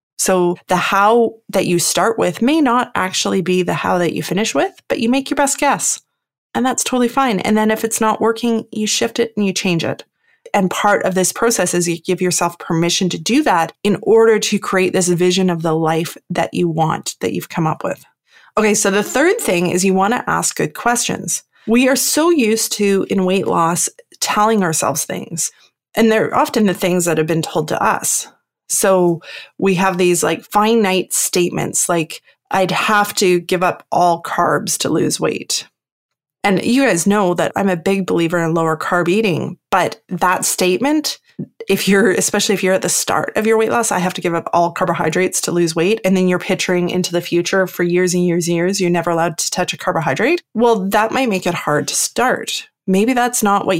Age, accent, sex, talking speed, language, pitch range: 30-49, American, female, 215 wpm, English, 175-220 Hz